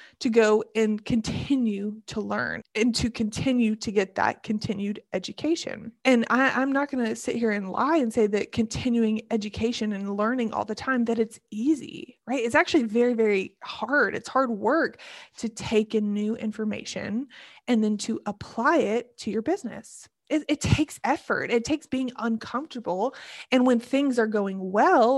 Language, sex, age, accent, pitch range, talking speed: English, female, 20-39, American, 210-245 Hz, 170 wpm